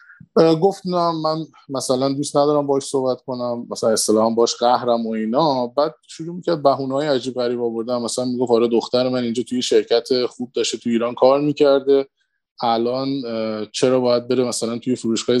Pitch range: 115-140 Hz